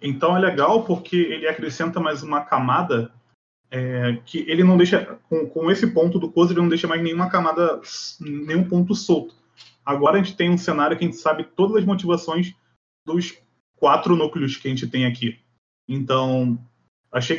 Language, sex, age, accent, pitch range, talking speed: Portuguese, male, 20-39, Brazilian, 140-180 Hz, 180 wpm